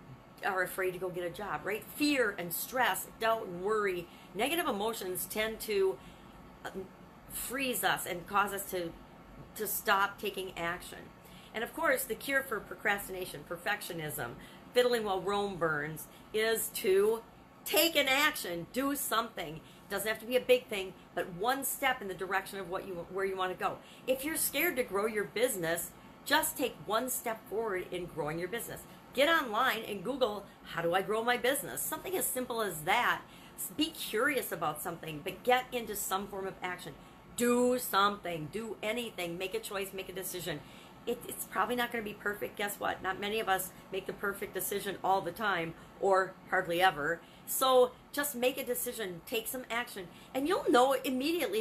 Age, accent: 40-59, American